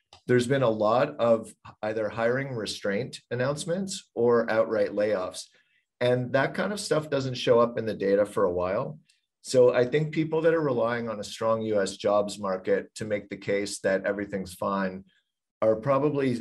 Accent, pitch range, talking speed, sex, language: American, 100-120 Hz, 175 wpm, male, English